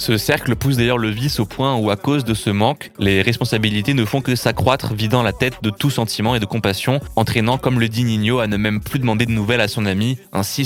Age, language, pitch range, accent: 20-39, French, 105-125 Hz, French